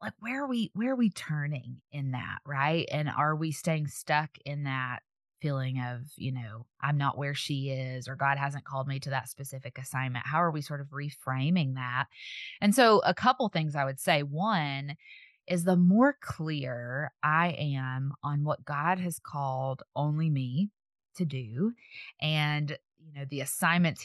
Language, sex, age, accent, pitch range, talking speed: English, female, 20-39, American, 140-180 Hz, 180 wpm